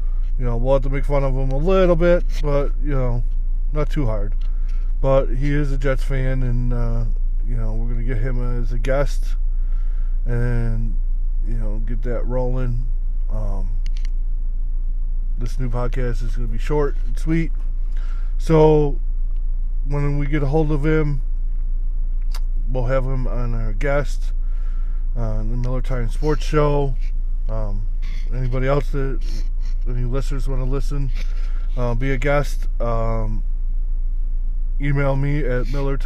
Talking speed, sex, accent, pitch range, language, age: 145 wpm, male, American, 95-135 Hz, English, 20-39